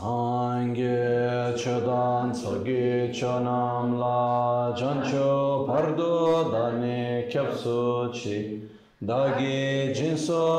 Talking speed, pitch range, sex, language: 75 wpm, 115-135 Hz, male, Italian